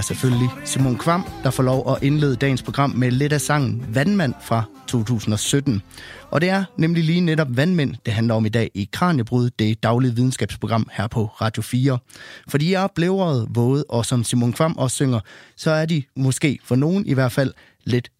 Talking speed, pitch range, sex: 190 wpm, 115-150 Hz, male